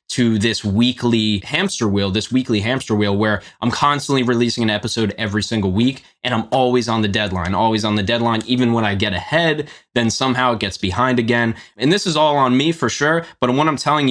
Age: 20-39